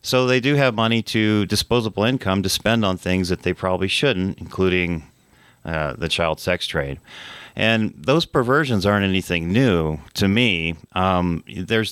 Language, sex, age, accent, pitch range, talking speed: English, male, 40-59, American, 80-100 Hz, 160 wpm